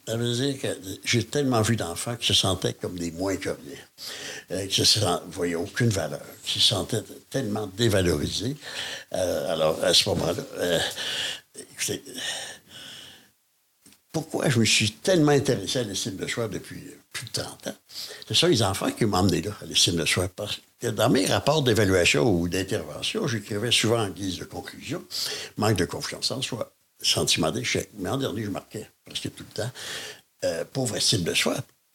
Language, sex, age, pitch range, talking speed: French, male, 60-79, 95-125 Hz, 185 wpm